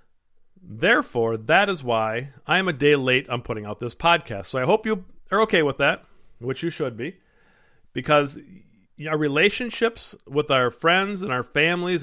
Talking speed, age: 175 wpm, 50-69